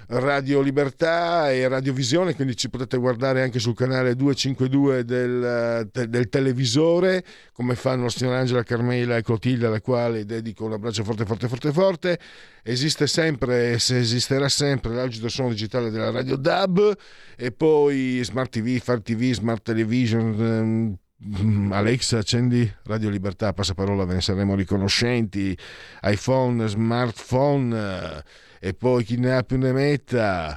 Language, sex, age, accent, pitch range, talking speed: Italian, male, 50-69, native, 105-135 Hz, 145 wpm